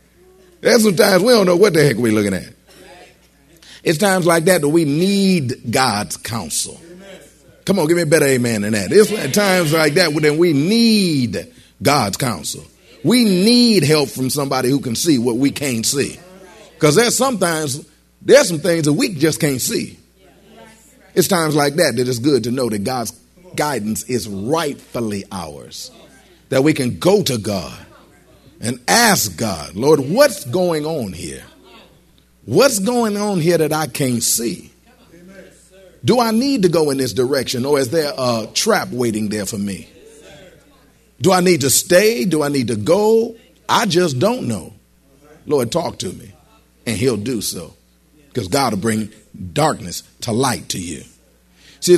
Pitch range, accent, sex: 115-185 Hz, American, male